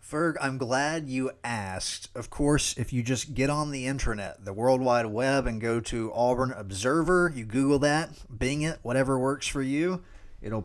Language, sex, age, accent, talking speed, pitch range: English, male, 30-49, American, 185 wpm, 110-140 Hz